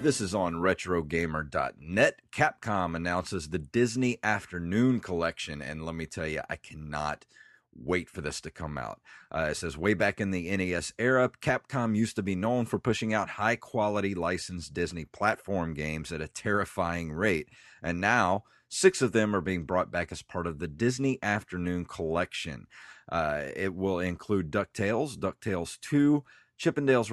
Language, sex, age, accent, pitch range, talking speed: English, male, 30-49, American, 90-115 Hz, 160 wpm